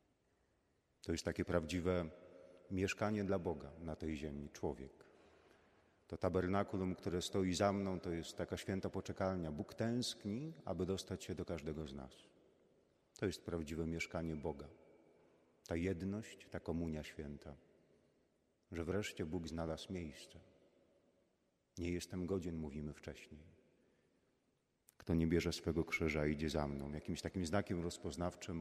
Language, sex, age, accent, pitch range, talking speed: Polish, male, 40-59, native, 75-95 Hz, 130 wpm